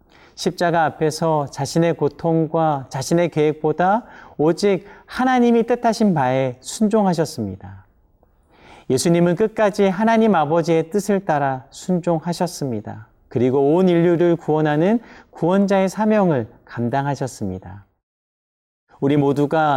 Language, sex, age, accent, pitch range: Korean, male, 40-59, native, 120-175 Hz